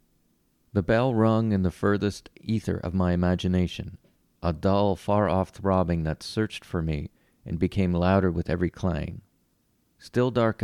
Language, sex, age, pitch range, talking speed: English, male, 40-59, 90-105 Hz, 145 wpm